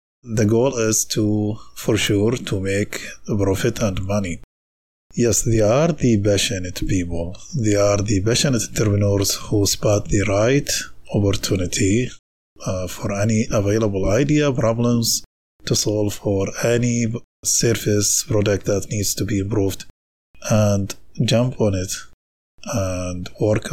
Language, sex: English, male